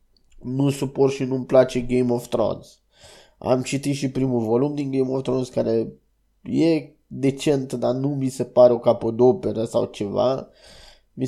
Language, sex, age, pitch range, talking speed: Romanian, male, 20-39, 120-135 Hz, 160 wpm